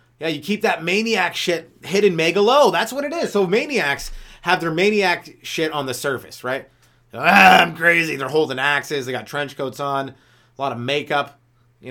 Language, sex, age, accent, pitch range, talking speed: English, male, 30-49, American, 120-150 Hz, 190 wpm